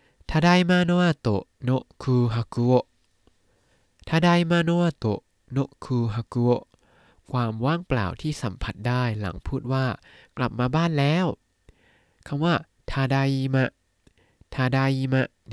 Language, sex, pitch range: Thai, male, 110-145 Hz